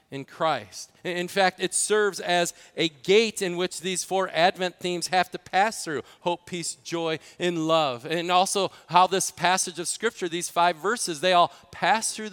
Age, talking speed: 40-59, 185 wpm